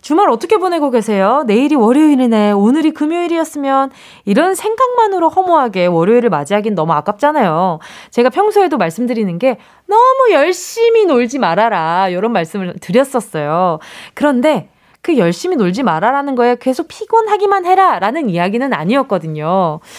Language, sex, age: Korean, female, 20-39